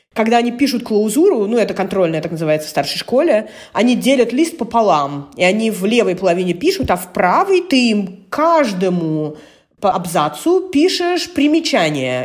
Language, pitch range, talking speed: Russian, 180-255 Hz, 155 wpm